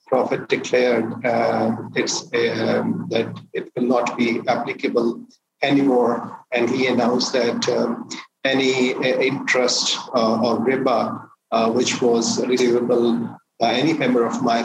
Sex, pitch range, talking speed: male, 120-140 Hz, 125 wpm